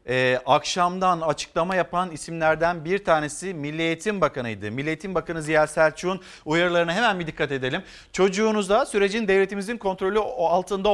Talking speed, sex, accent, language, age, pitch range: 135 wpm, male, native, Turkish, 50-69, 170-215 Hz